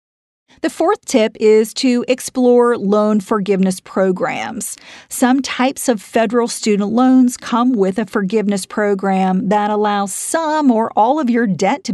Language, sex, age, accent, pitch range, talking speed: English, female, 40-59, American, 200-250 Hz, 145 wpm